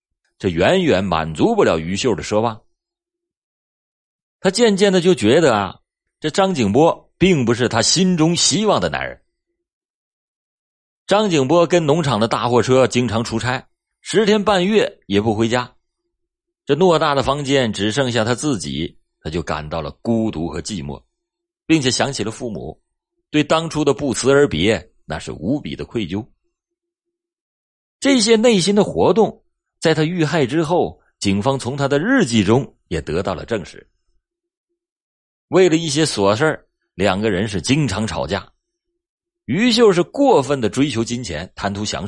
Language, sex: Chinese, male